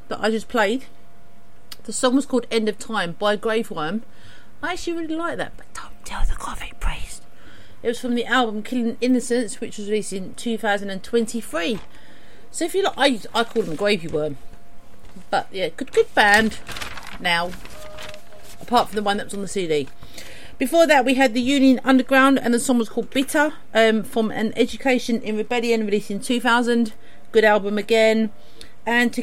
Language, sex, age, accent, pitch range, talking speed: English, female, 40-59, British, 205-255 Hz, 180 wpm